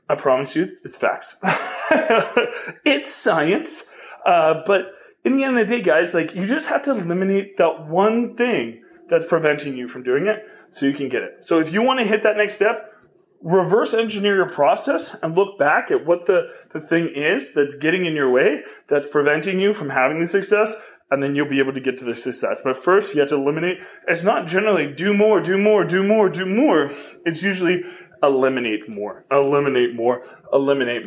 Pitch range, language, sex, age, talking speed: 140-205 Hz, English, male, 20-39, 200 wpm